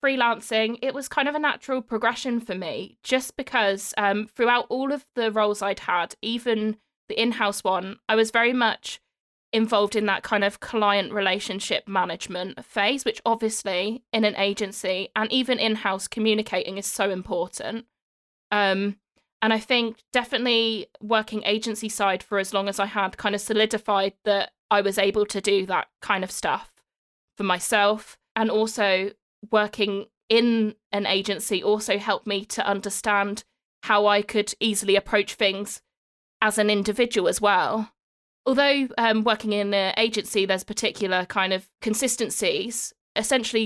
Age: 20-39